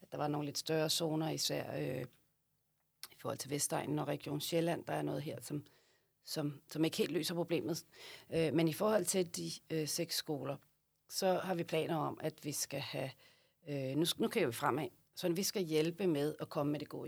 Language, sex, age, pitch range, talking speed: Danish, female, 40-59, 155-175 Hz, 210 wpm